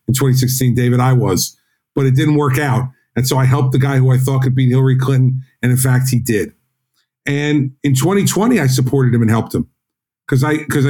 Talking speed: 220 wpm